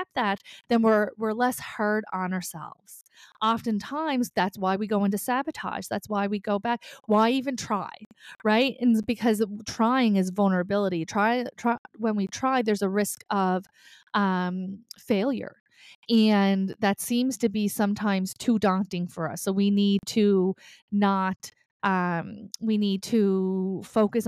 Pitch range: 195-230 Hz